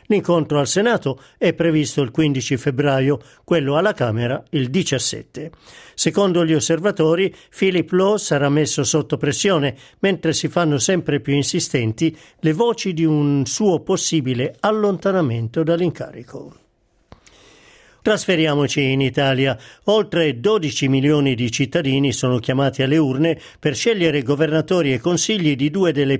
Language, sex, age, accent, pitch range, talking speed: Italian, male, 50-69, native, 135-170 Hz, 130 wpm